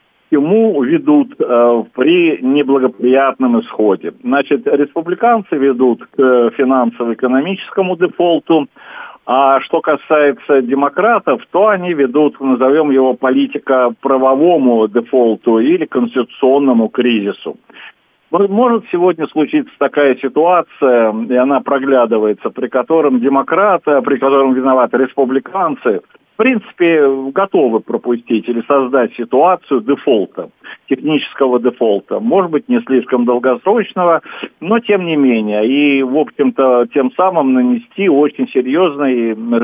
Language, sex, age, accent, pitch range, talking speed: Russian, male, 50-69, native, 120-165 Hz, 105 wpm